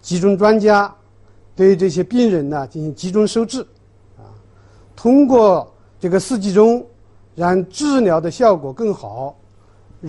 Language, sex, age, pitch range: Chinese, male, 50-69, 130-215 Hz